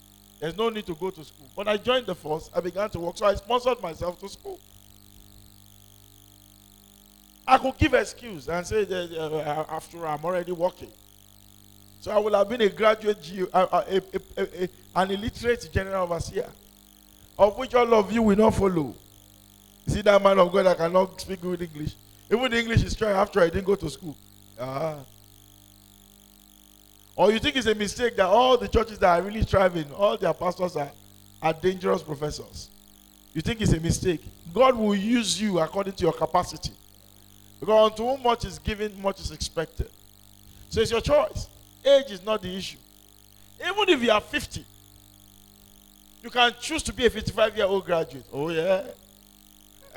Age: 50-69